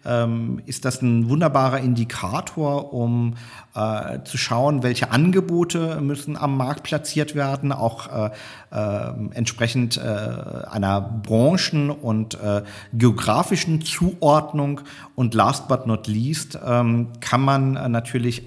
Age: 50-69